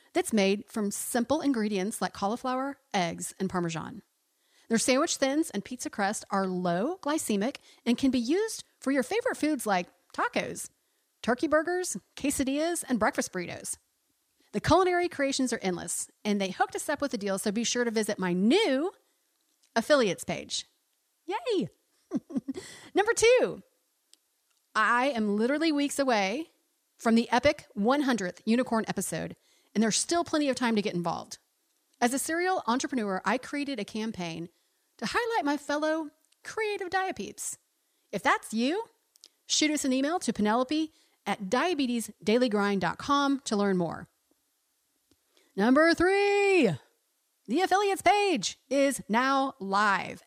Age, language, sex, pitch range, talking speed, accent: 40-59, English, female, 215-325 Hz, 140 wpm, American